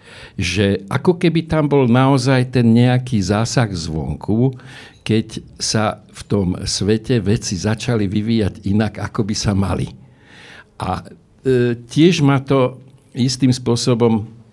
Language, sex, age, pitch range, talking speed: Slovak, male, 60-79, 95-120 Hz, 120 wpm